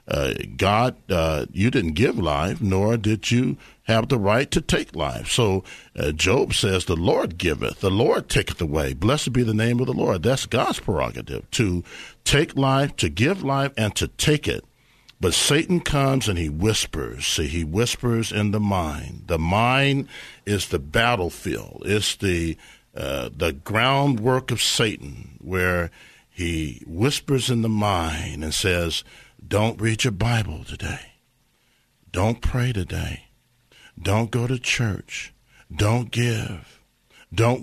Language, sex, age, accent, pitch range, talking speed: English, male, 60-79, American, 90-120 Hz, 150 wpm